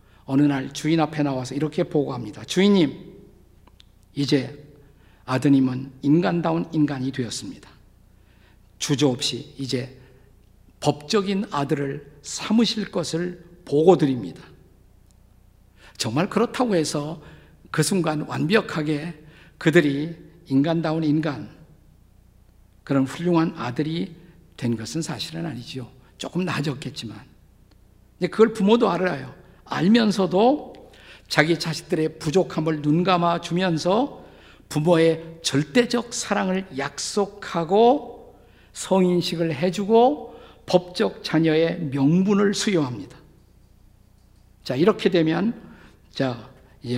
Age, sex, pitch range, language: 50-69, male, 130-180 Hz, Korean